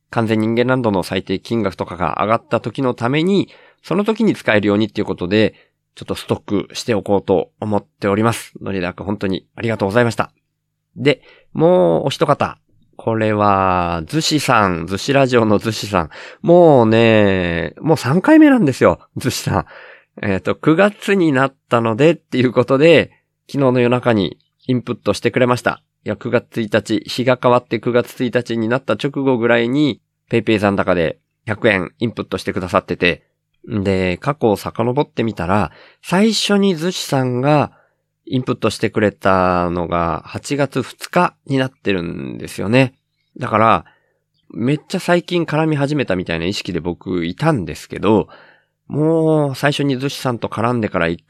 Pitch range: 100-140 Hz